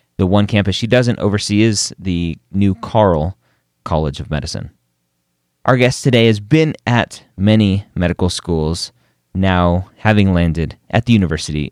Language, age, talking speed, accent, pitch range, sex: English, 30-49, 145 wpm, American, 90-135 Hz, male